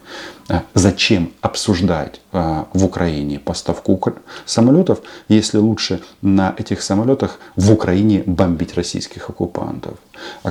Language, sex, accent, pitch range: Russian, male, native, 90-110 Hz